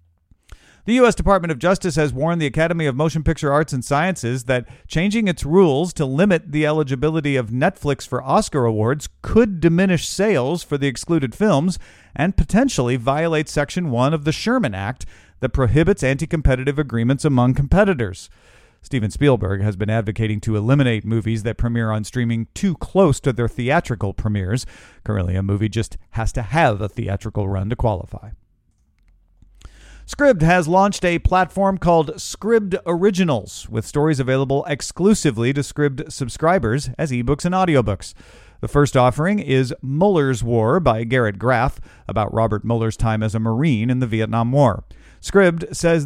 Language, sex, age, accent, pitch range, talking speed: English, male, 40-59, American, 110-160 Hz, 160 wpm